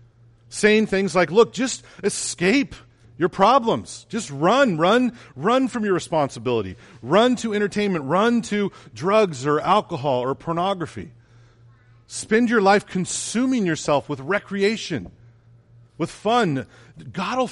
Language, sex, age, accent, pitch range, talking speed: English, male, 40-59, American, 115-165 Hz, 125 wpm